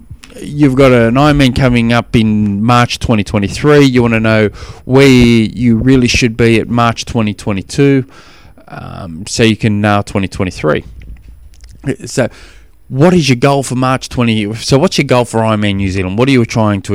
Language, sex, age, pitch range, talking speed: English, male, 20-39, 100-125 Hz, 170 wpm